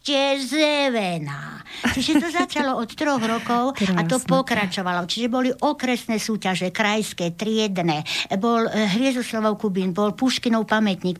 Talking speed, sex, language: 120 wpm, female, Slovak